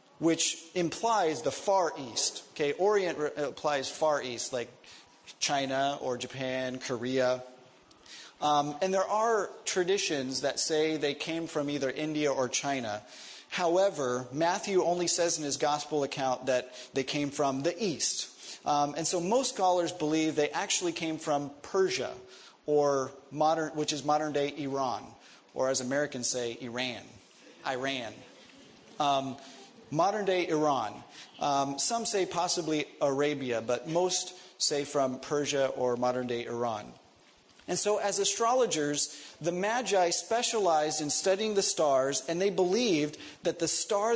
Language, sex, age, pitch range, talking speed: English, male, 30-49, 135-180 Hz, 135 wpm